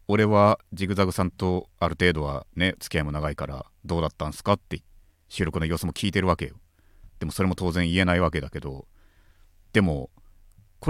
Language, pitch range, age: Japanese, 80-95 Hz, 40-59